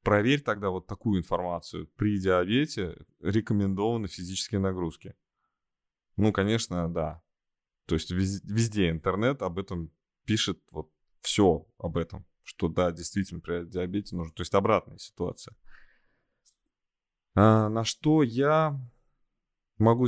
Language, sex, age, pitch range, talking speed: Russian, male, 20-39, 90-110 Hz, 115 wpm